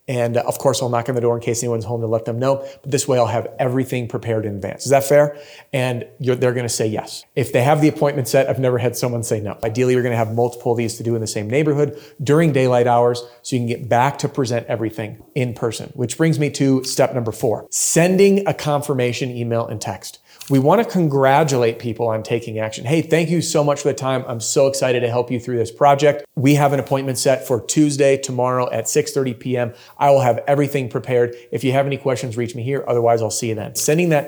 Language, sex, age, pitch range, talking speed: English, male, 30-49, 120-145 Hz, 245 wpm